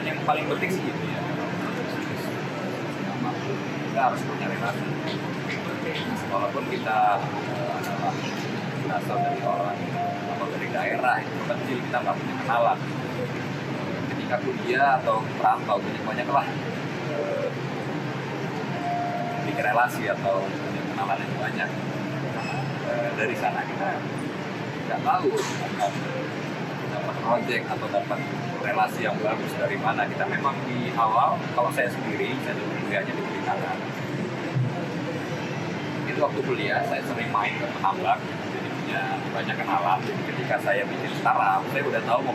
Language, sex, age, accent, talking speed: Indonesian, male, 20-39, native, 125 wpm